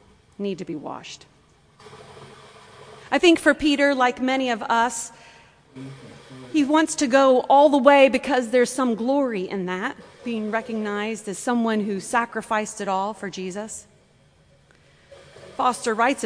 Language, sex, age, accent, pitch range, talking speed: English, female, 40-59, American, 185-260 Hz, 135 wpm